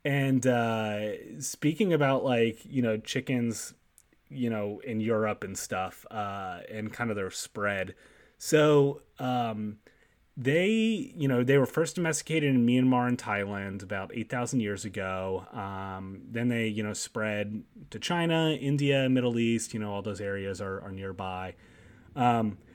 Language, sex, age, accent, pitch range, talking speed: English, male, 30-49, American, 100-130 Hz, 150 wpm